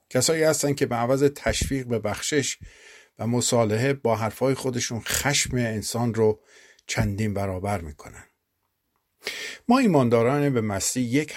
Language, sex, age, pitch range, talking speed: Persian, male, 50-69, 100-130 Hz, 125 wpm